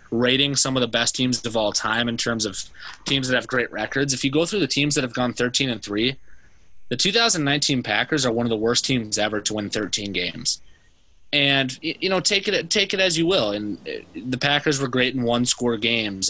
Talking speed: 230 wpm